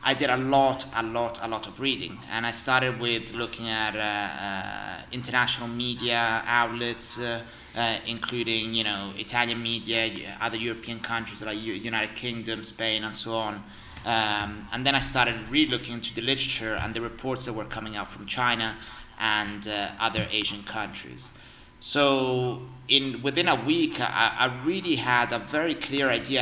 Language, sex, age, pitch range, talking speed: English, male, 30-49, 110-130 Hz, 170 wpm